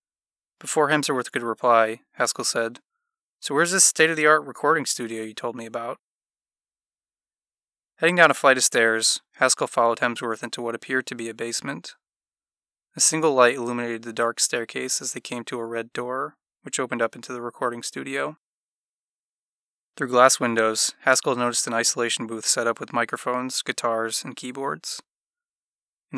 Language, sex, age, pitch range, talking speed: English, male, 20-39, 115-130 Hz, 160 wpm